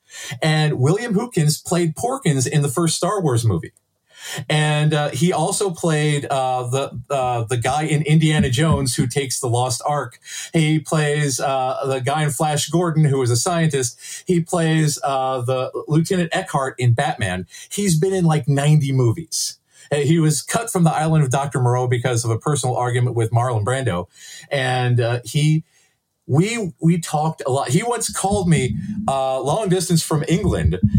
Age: 40-59